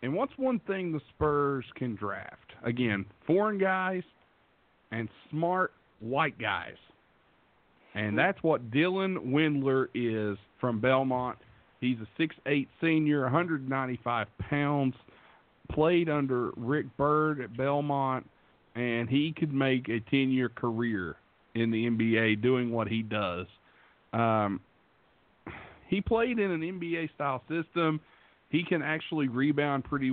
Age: 50-69